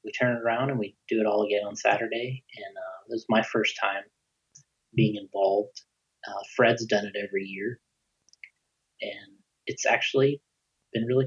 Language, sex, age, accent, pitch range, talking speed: English, male, 30-49, American, 105-130 Hz, 170 wpm